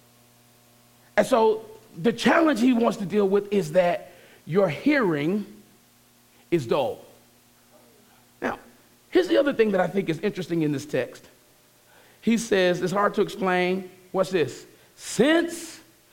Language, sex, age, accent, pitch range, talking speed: English, male, 40-59, American, 180-275 Hz, 140 wpm